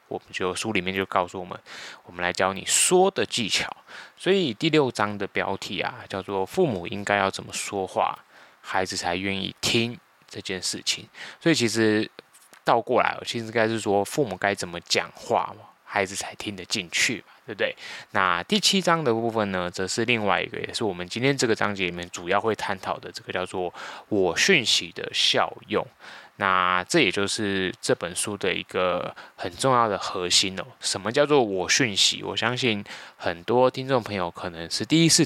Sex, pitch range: male, 95-115 Hz